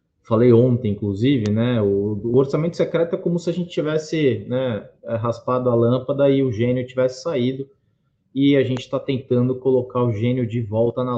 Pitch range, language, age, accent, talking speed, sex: 110-130 Hz, Portuguese, 20-39, Brazilian, 185 wpm, male